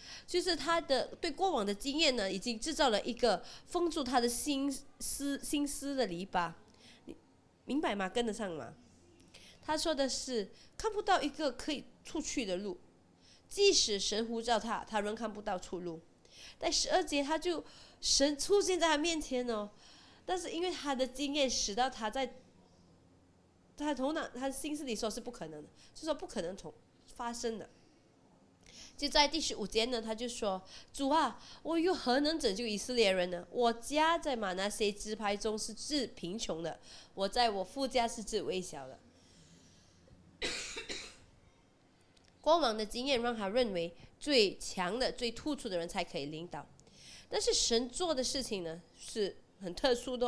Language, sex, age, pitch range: Chinese, female, 20-39, 190-285 Hz